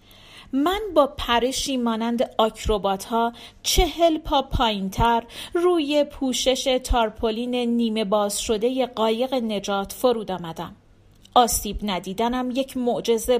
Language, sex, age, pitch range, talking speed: Persian, female, 40-59, 205-265 Hz, 110 wpm